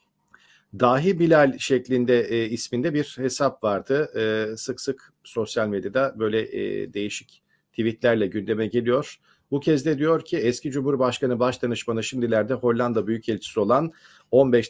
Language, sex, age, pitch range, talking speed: Turkish, male, 50-69, 115-140 Hz, 135 wpm